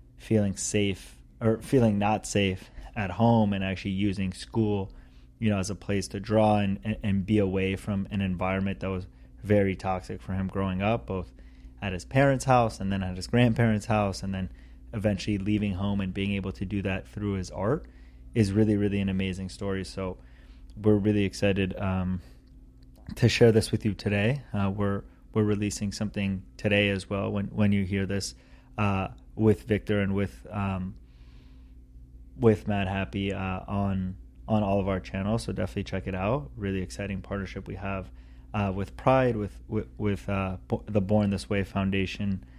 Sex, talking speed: male, 180 wpm